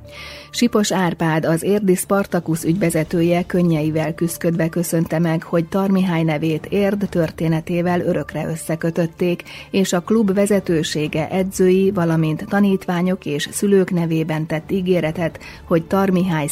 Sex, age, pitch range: female, 30-49, 155-190 Hz